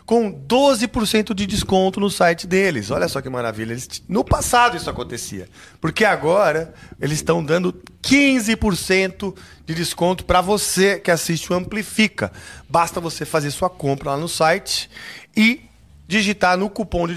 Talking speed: 150 wpm